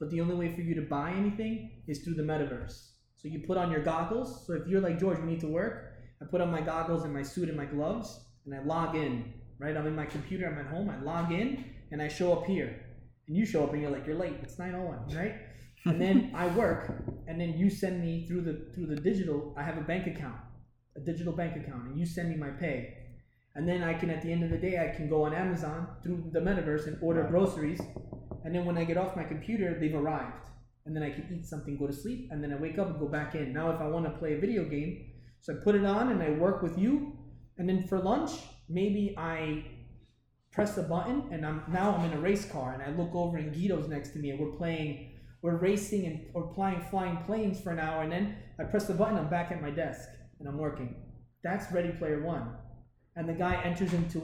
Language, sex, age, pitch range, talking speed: English, male, 20-39, 145-180 Hz, 255 wpm